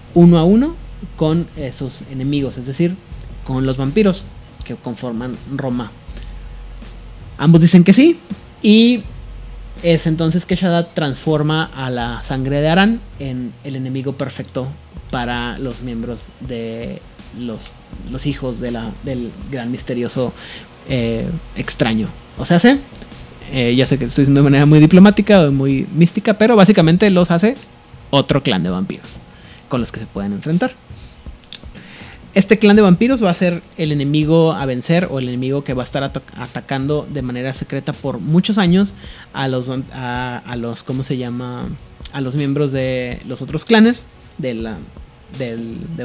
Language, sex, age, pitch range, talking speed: Spanish, male, 30-49, 125-175 Hz, 160 wpm